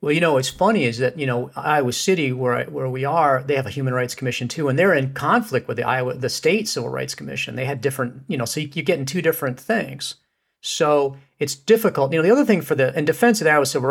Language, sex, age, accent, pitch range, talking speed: English, male, 40-59, American, 130-160 Hz, 270 wpm